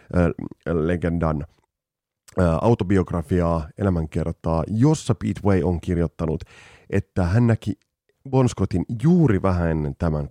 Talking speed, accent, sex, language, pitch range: 100 wpm, native, male, Finnish, 85-110 Hz